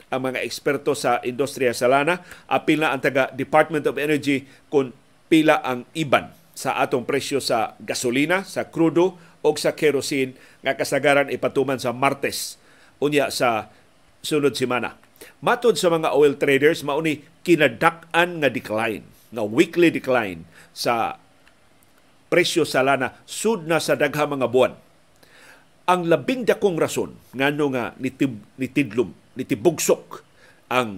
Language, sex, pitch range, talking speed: Filipino, male, 125-155 Hz, 130 wpm